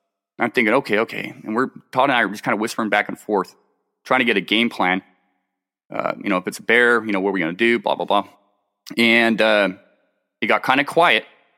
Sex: male